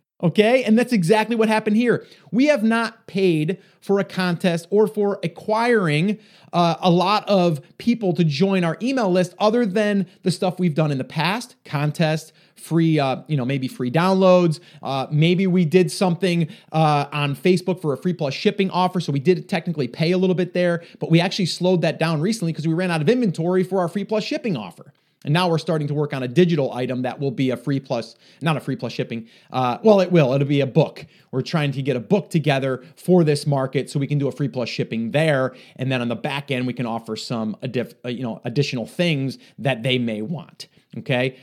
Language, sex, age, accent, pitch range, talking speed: English, male, 30-49, American, 140-190 Hz, 220 wpm